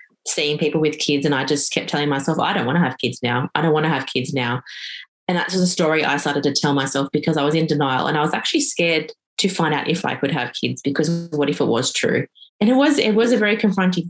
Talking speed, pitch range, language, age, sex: 280 wpm, 145-170 Hz, English, 20-39, female